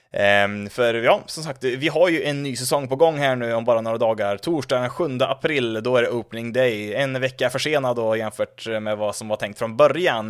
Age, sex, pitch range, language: 20-39, male, 115-140 Hz, Swedish